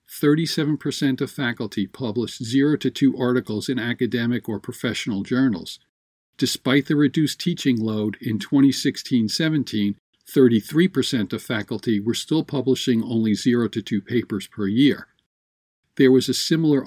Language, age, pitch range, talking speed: English, 50-69, 115-145 Hz, 130 wpm